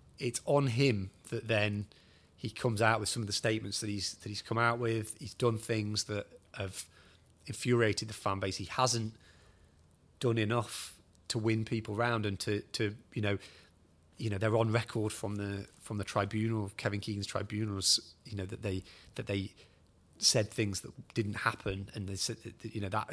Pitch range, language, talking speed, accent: 95-115 Hz, English, 190 wpm, British